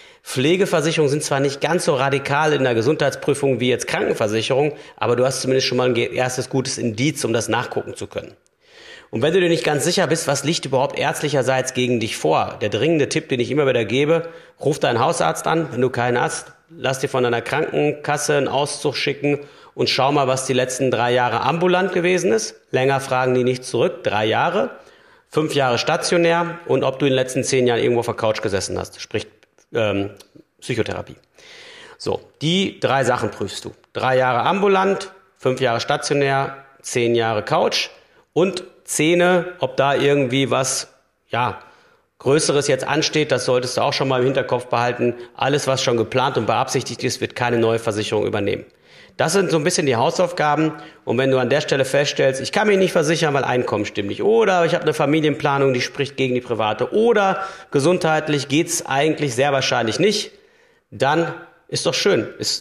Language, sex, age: German, male, 40-59